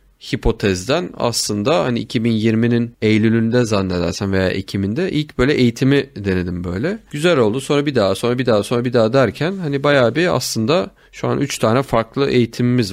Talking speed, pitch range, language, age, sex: 165 wpm, 100-125 Hz, Turkish, 30-49, male